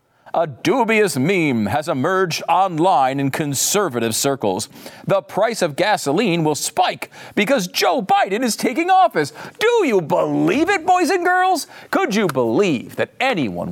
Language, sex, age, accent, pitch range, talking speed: English, male, 40-59, American, 120-200 Hz, 145 wpm